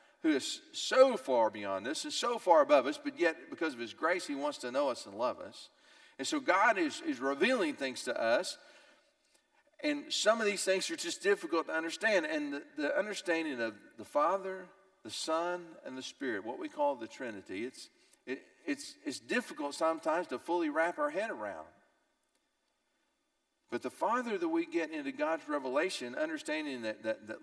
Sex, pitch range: male, 190-305 Hz